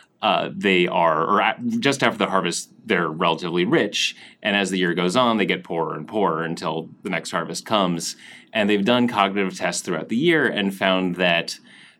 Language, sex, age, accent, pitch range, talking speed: English, male, 30-49, American, 85-105 Hz, 190 wpm